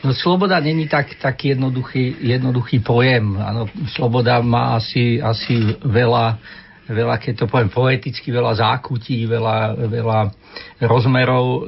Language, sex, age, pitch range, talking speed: Slovak, male, 50-69, 120-145 Hz, 125 wpm